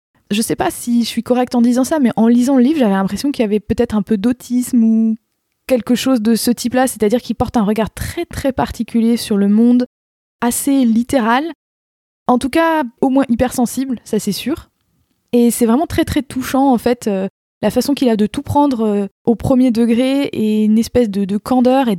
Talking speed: 220 wpm